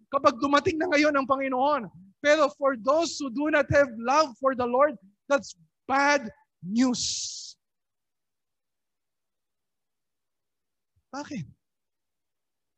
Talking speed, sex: 100 wpm, male